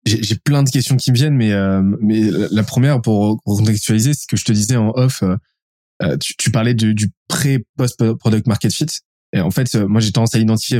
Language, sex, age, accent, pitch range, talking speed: French, male, 20-39, French, 105-120 Hz, 210 wpm